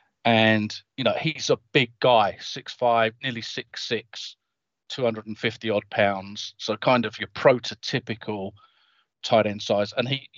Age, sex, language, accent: 40-59, male, English, British